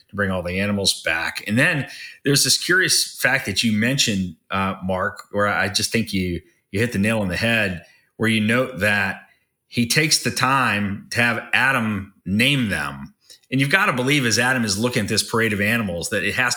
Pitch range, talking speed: 95-120 Hz, 215 wpm